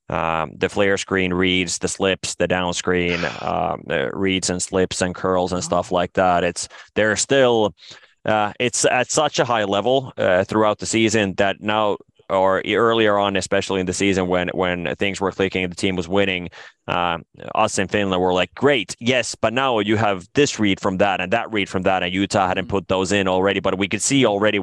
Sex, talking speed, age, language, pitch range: male, 210 wpm, 20-39, English, 90-105 Hz